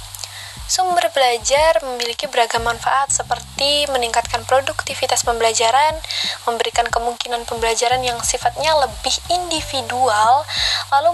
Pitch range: 230-275 Hz